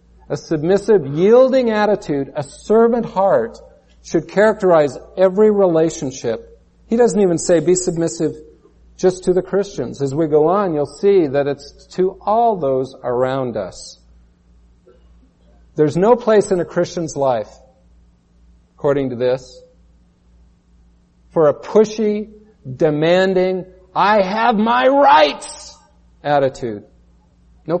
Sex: male